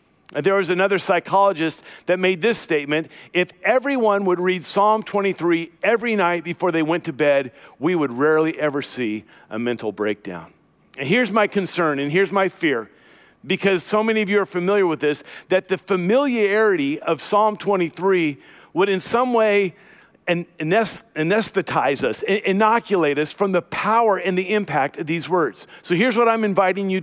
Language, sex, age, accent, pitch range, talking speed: English, male, 50-69, American, 165-210 Hz, 165 wpm